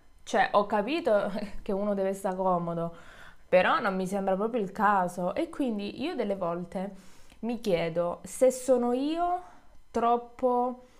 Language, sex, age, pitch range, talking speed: Italian, female, 20-39, 195-260 Hz, 140 wpm